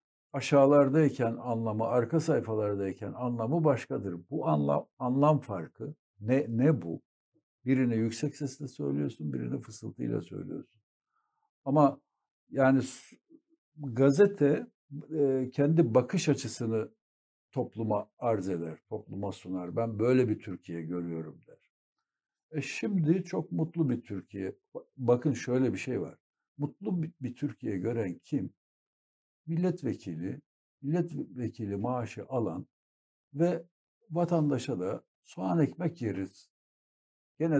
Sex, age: male, 60-79